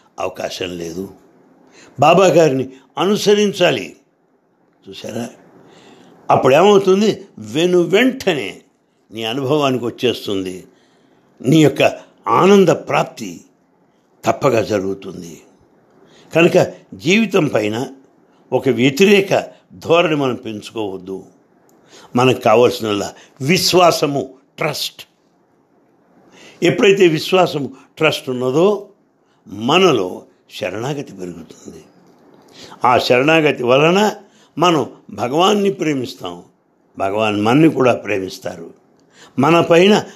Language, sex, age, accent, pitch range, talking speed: English, male, 60-79, Indian, 115-185 Hz, 65 wpm